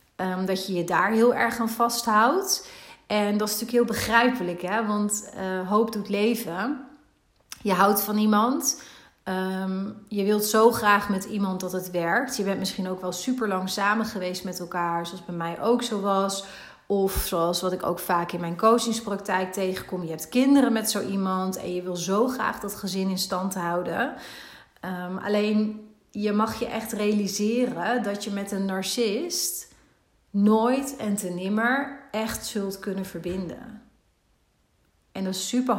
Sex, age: female, 30-49